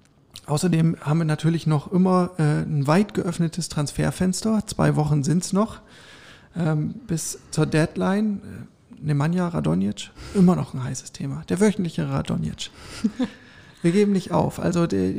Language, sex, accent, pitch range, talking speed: German, male, German, 145-175 Hz, 130 wpm